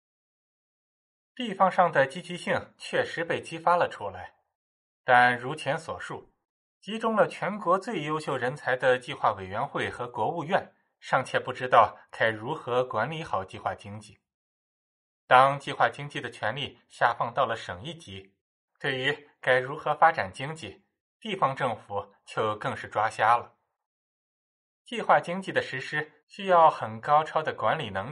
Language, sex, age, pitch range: Chinese, male, 20-39, 110-165 Hz